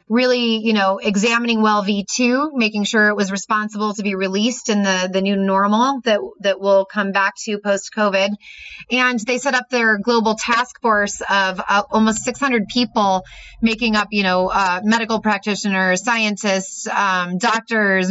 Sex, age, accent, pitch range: female, 20-39, American, 190-220 Hz